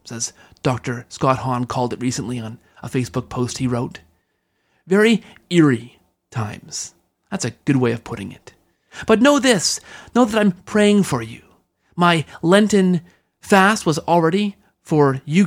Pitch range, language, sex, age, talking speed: 130-185 Hz, English, male, 30-49, 150 wpm